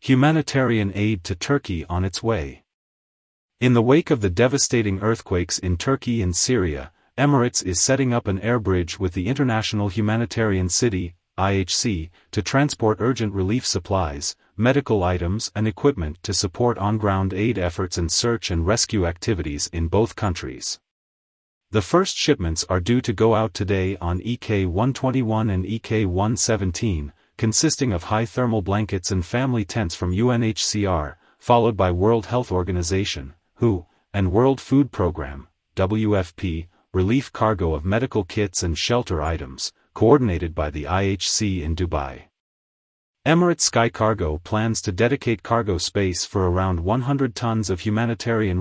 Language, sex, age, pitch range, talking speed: English, male, 40-59, 90-115 Hz, 140 wpm